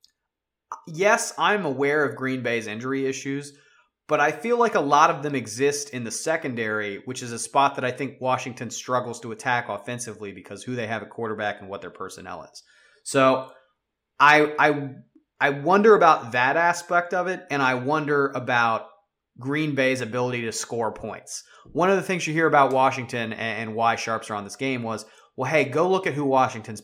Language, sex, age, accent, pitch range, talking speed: English, male, 30-49, American, 115-145 Hz, 190 wpm